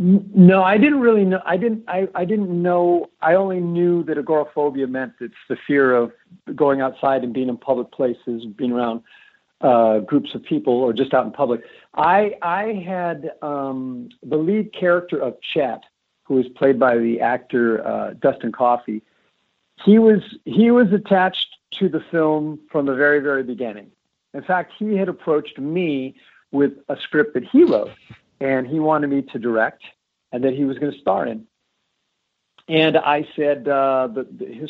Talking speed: 175 wpm